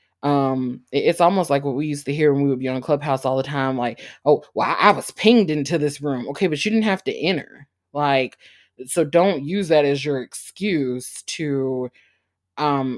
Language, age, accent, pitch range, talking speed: English, 20-39, American, 130-170 Hz, 215 wpm